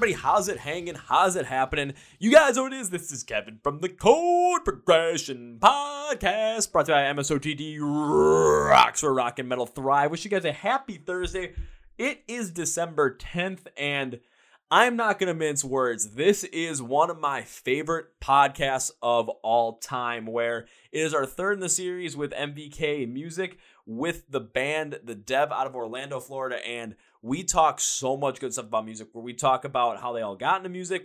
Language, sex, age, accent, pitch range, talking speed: English, male, 20-39, American, 120-165 Hz, 190 wpm